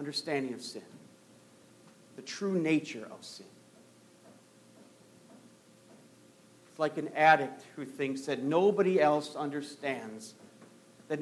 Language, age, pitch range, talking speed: English, 50-69, 125-170 Hz, 100 wpm